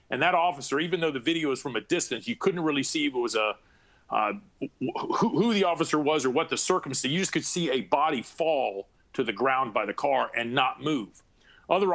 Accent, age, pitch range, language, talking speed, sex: American, 40-59, 145-180 Hz, English, 205 wpm, male